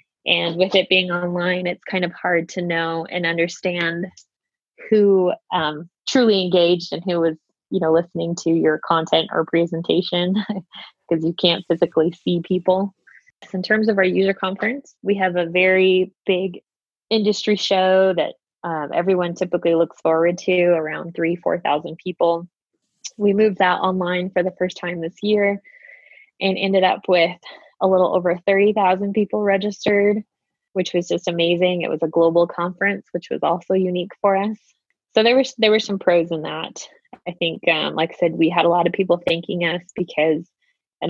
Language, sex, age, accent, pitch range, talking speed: English, female, 20-39, American, 170-190 Hz, 170 wpm